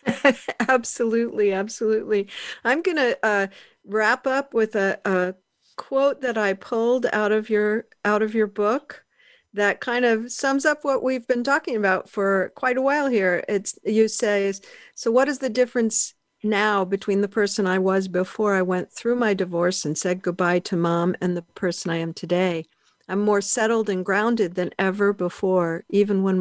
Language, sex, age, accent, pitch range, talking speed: English, female, 50-69, American, 185-225 Hz, 175 wpm